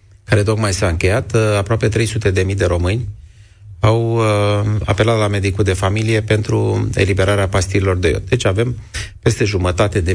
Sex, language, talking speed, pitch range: male, Romanian, 150 wpm, 90-105 Hz